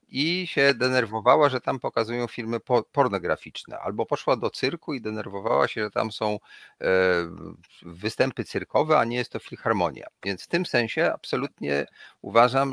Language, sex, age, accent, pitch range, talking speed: Polish, male, 40-59, native, 105-150 Hz, 145 wpm